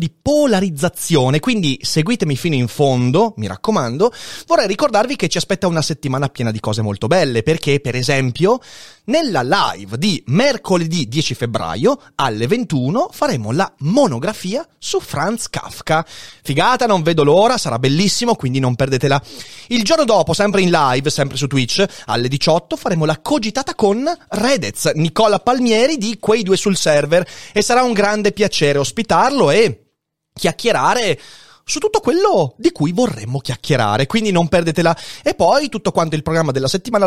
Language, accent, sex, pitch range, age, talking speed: Italian, native, male, 135-215 Hz, 30-49, 155 wpm